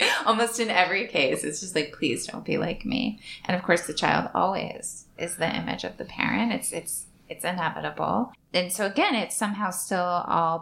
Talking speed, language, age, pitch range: 200 wpm, English, 20-39, 150-185 Hz